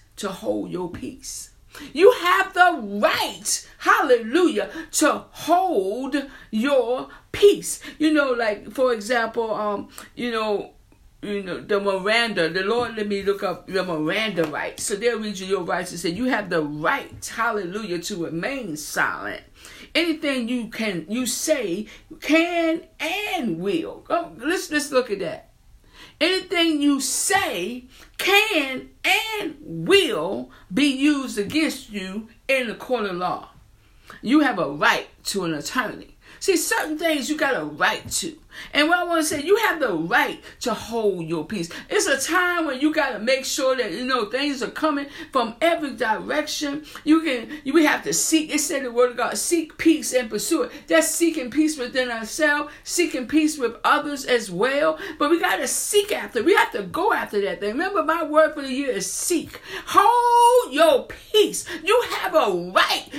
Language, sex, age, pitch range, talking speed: English, female, 50-69, 220-325 Hz, 175 wpm